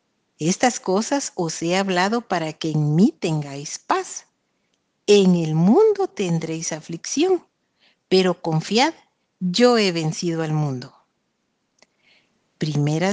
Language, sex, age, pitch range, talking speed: Spanish, female, 50-69, 165-230 Hz, 110 wpm